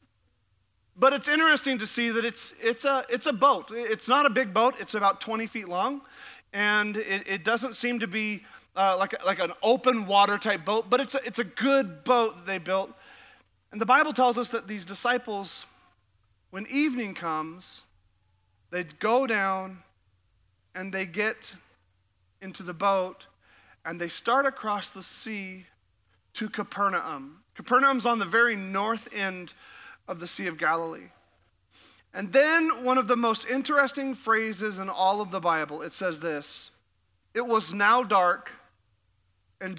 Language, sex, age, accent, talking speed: English, male, 40-59, American, 160 wpm